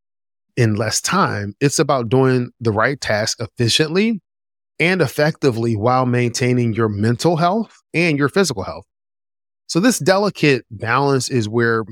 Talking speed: 135 wpm